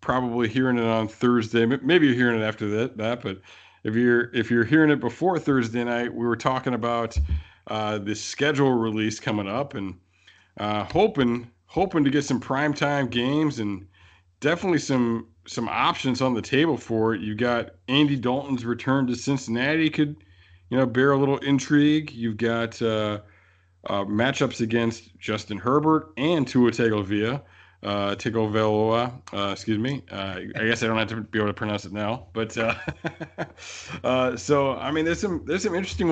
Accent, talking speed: American, 175 wpm